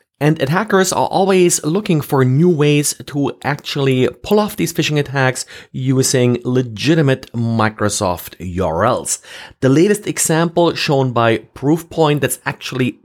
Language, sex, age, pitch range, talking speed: English, male, 40-59, 115-145 Hz, 125 wpm